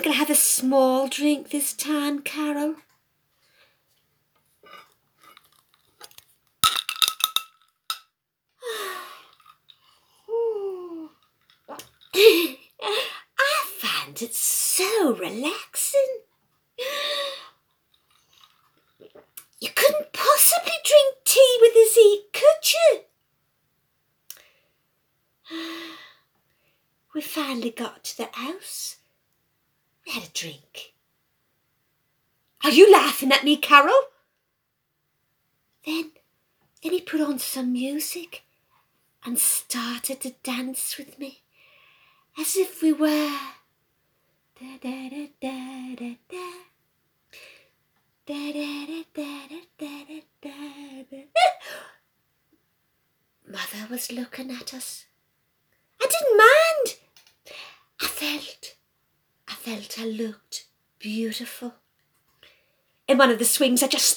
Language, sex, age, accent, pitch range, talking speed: English, female, 50-69, British, 270-365 Hz, 75 wpm